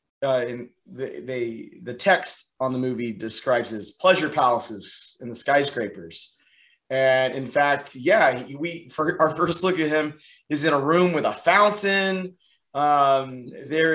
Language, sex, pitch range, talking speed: English, male, 130-170 Hz, 150 wpm